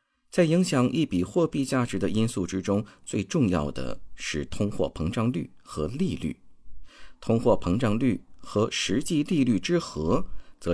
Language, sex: Chinese, male